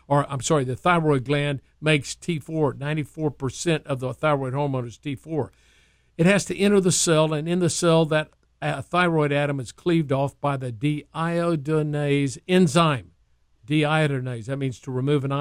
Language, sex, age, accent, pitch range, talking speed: English, male, 50-69, American, 140-170 Hz, 160 wpm